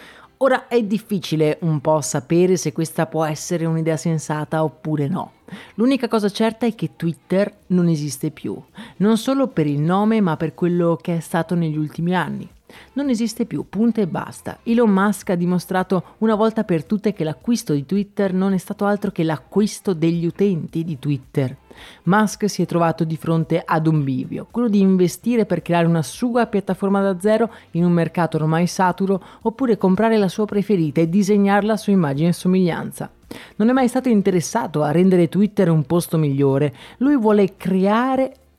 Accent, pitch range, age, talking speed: native, 160-210 Hz, 30-49, 180 wpm